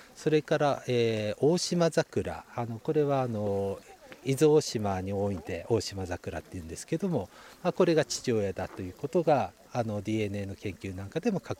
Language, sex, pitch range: Japanese, male, 100-145 Hz